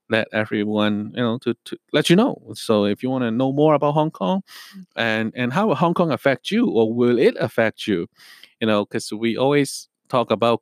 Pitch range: 110-140 Hz